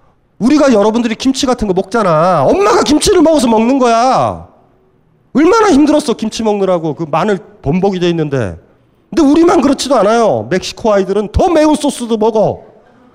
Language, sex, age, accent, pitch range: Korean, male, 30-49, native, 165-255 Hz